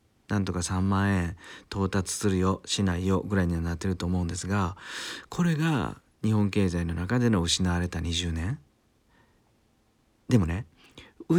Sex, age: male, 40-59